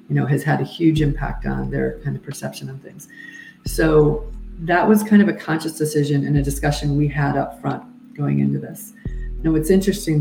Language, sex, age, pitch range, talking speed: English, female, 40-59, 140-170 Hz, 205 wpm